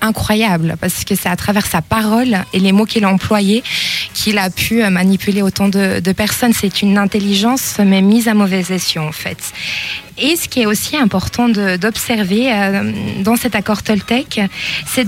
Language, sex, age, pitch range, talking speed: French, female, 20-39, 195-235 Hz, 185 wpm